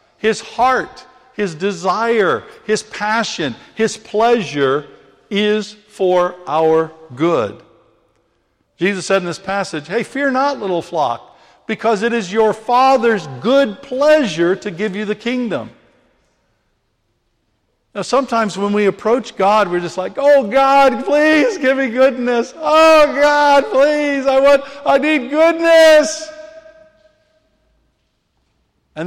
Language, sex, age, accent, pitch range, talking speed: English, male, 60-79, American, 150-230 Hz, 120 wpm